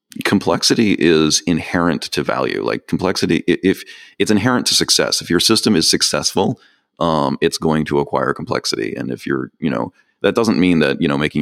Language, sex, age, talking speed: English, male, 30-49, 190 wpm